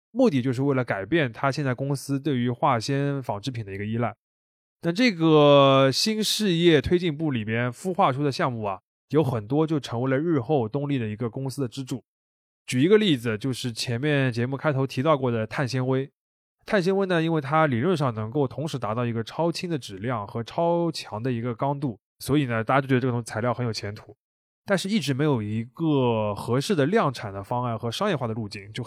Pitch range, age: 120-165 Hz, 20-39